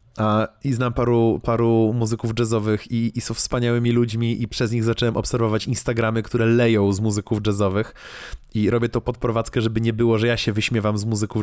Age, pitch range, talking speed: 20-39, 110-125 Hz, 185 wpm